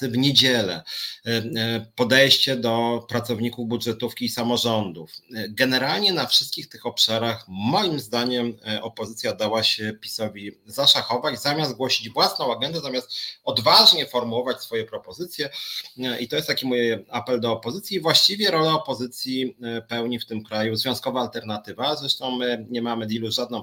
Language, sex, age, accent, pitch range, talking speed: Polish, male, 30-49, native, 110-130 Hz, 135 wpm